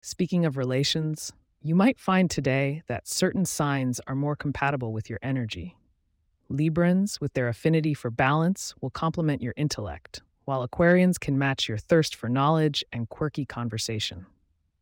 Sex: female